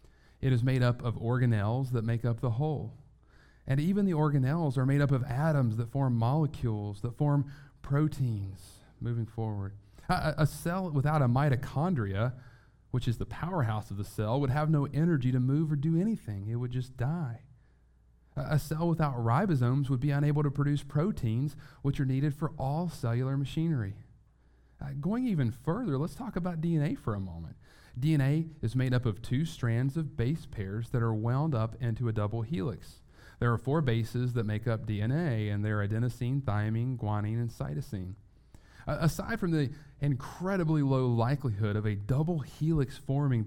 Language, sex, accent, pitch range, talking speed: English, male, American, 115-145 Hz, 175 wpm